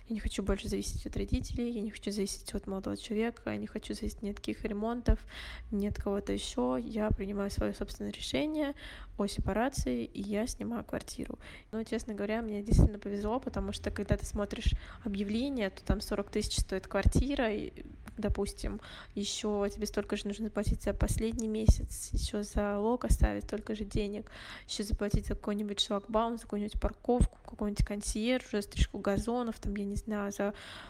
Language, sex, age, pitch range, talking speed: Russian, female, 10-29, 200-225 Hz, 175 wpm